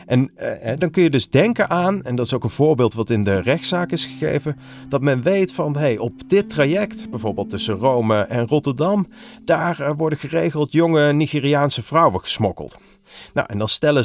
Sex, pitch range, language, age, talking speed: male, 115-145 Hz, Dutch, 30-49, 190 wpm